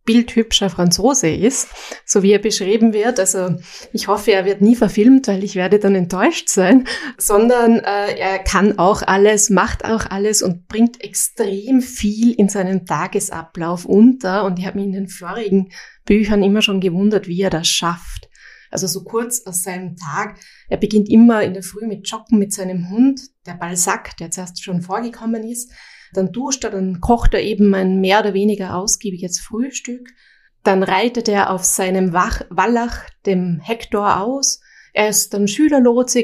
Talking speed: 170 wpm